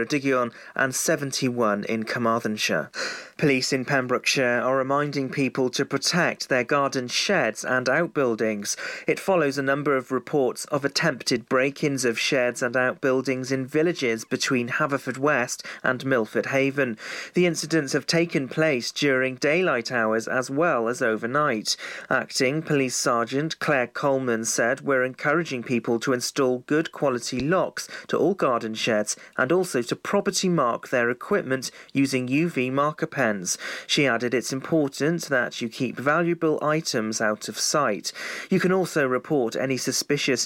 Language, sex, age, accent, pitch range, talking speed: English, male, 40-59, British, 125-150 Hz, 145 wpm